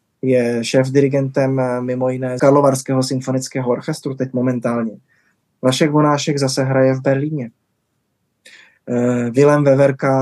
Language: Czech